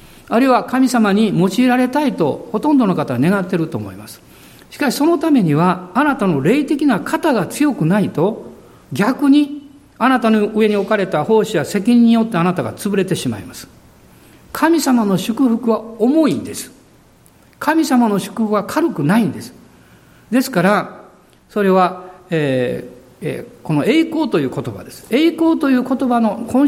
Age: 50-69